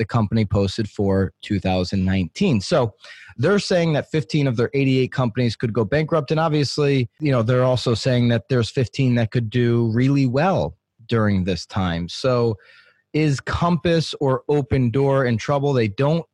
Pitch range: 110-135 Hz